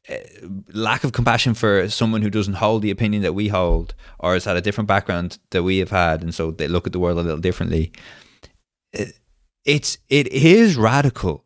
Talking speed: 200 wpm